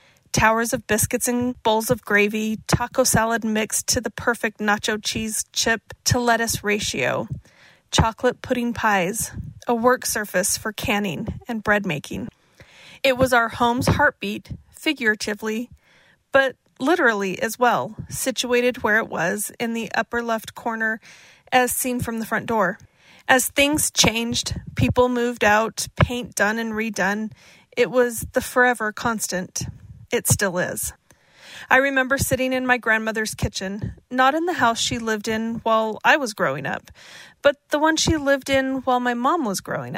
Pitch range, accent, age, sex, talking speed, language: 215-255 Hz, American, 40-59, female, 155 wpm, English